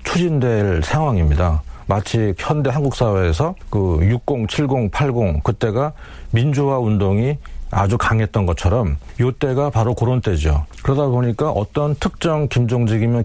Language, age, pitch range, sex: Korean, 40-59, 100-145 Hz, male